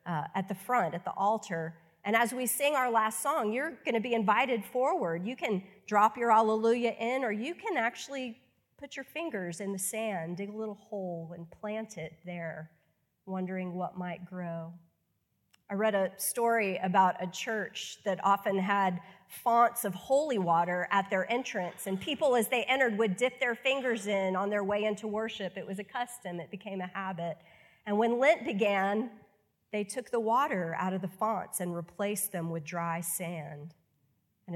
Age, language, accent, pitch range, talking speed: 40-59, English, American, 175-225 Hz, 185 wpm